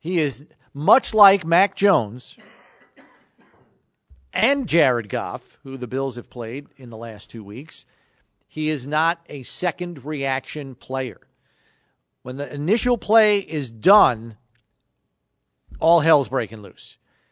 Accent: American